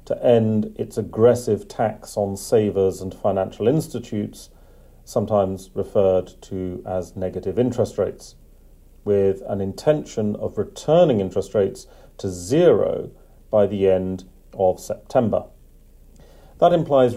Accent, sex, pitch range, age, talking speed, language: British, male, 95-115 Hz, 40-59, 115 wpm, English